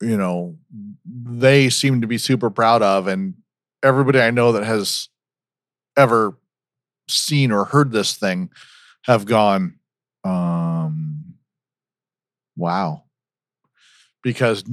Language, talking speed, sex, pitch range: English, 105 wpm, male, 105-135 Hz